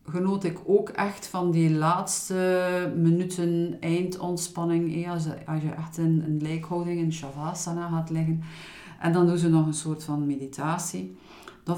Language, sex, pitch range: Dutch, female, 160-195 Hz